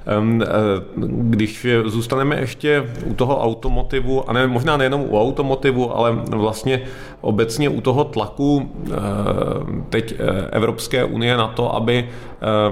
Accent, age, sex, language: native, 30-49, male, Czech